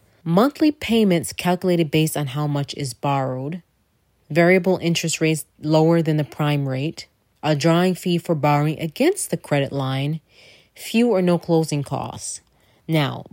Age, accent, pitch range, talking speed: 30-49, American, 145-175 Hz, 145 wpm